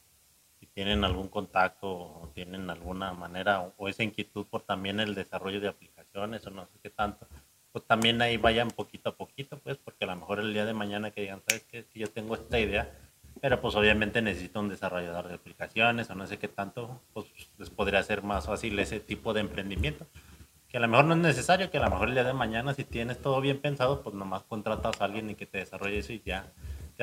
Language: Spanish